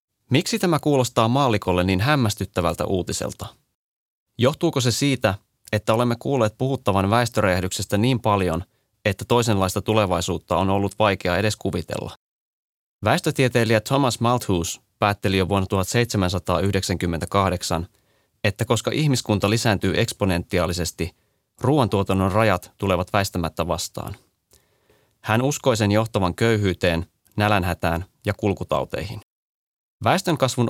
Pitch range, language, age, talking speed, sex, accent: 95-115 Hz, Finnish, 30-49, 100 wpm, male, native